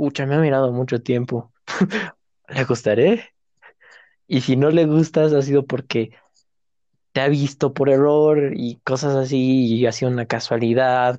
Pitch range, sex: 115-135 Hz, male